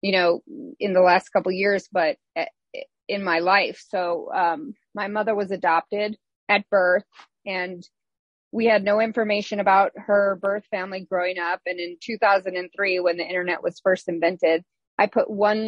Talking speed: 165 wpm